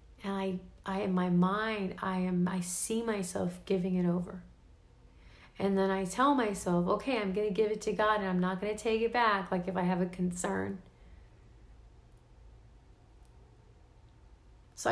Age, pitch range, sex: 40-59, 180-220 Hz, female